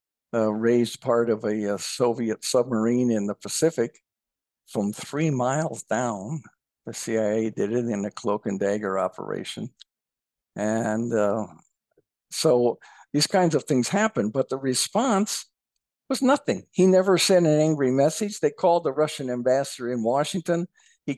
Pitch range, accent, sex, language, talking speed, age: 115-160 Hz, American, male, English, 145 wpm, 60-79